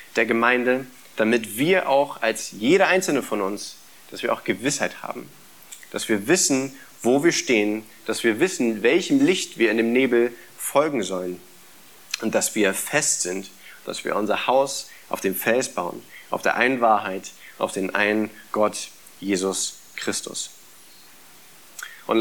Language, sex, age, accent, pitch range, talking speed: German, male, 30-49, German, 115-140 Hz, 150 wpm